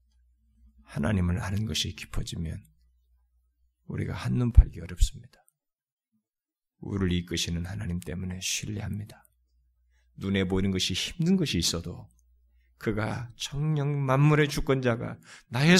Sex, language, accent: male, Korean, native